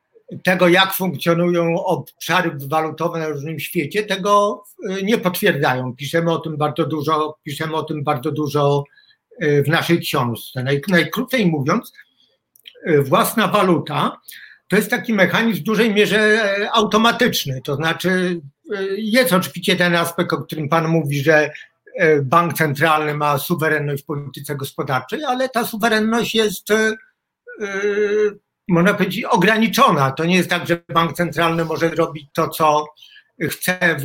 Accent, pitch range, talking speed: native, 155-205 Hz, 125 wpm